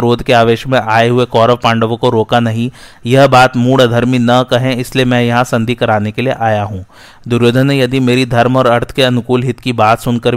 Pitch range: 115-130 Hz